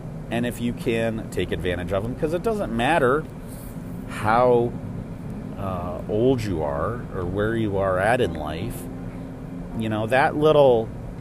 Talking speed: 150 wpm